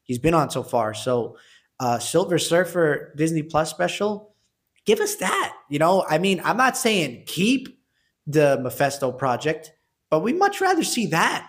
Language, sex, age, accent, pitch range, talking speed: English, male, 20-39, American, 135-175 Hz, 165 wpm